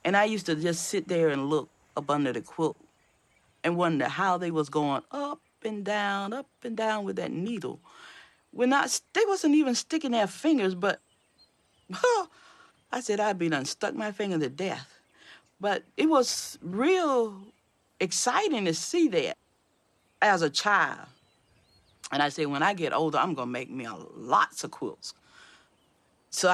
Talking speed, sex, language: 170 wpm, female, English